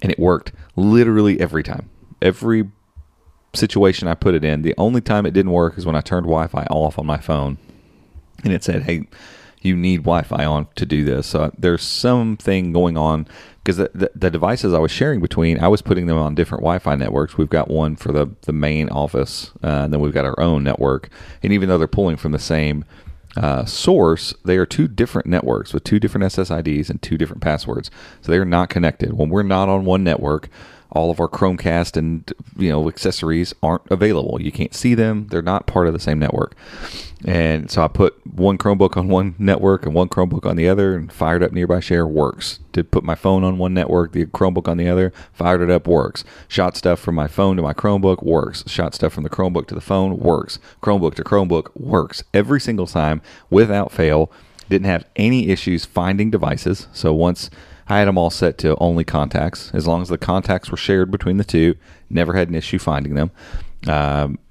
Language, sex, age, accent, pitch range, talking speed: English, male, 40-59, American, 80-95 Hz, 215 wpm